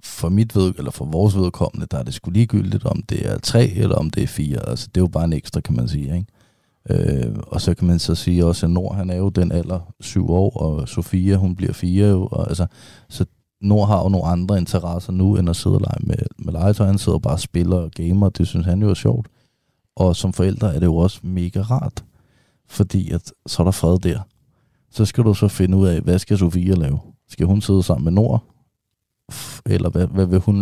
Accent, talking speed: native, 240 wpm